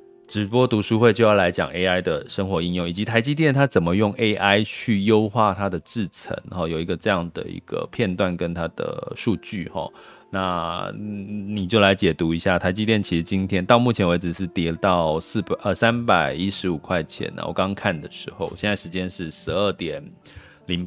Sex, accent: male, native